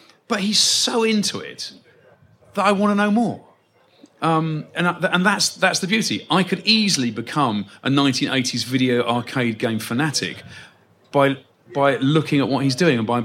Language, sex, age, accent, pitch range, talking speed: English, male, 40-59, British, 115-155 Hz, 165 wpm